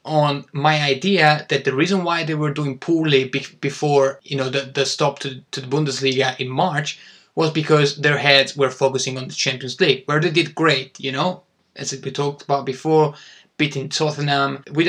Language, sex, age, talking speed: Italian, male, 20-39, 190 wpm